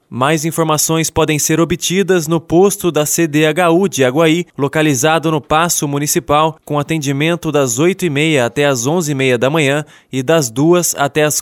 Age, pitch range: 20-39, 150-175 Hz